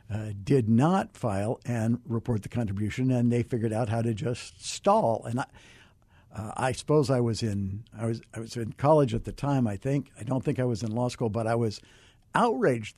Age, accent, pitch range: 60-79, American, 115-145 Hz